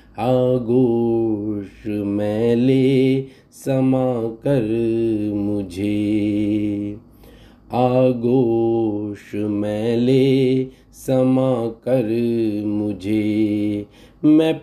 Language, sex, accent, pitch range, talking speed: Hindi, male, native, 110-135 Hz, 50 wpm